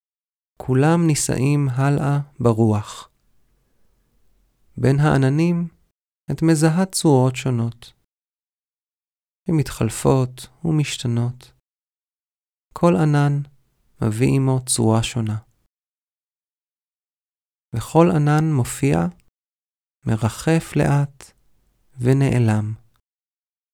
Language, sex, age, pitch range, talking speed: Hebrew, male, 40-59, 115-150 Hz, 65 wpm